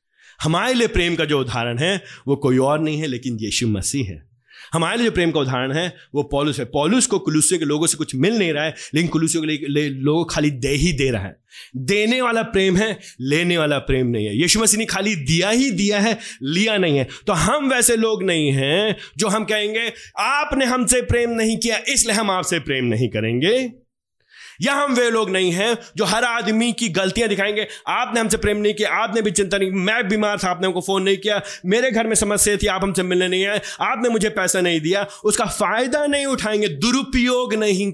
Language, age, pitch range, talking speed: Hindi, 30-49, 145-220 Hz, 215 wpm